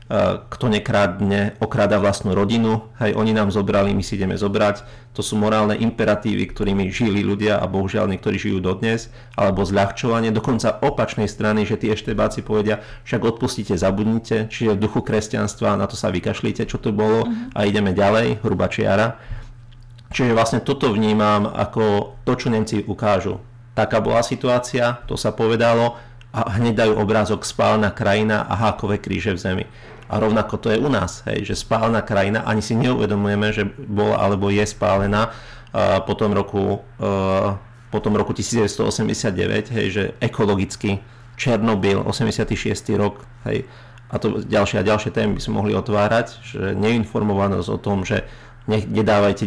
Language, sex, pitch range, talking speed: Slovak, male, 100-115 Hz, 155 wpm